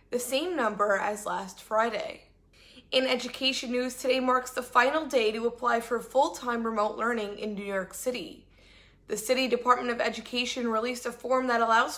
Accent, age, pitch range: American, 20-39, 220-255 Hz